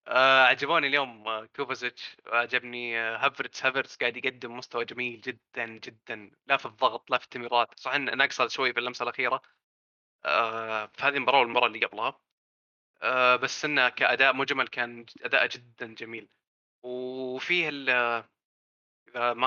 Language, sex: Arabic, male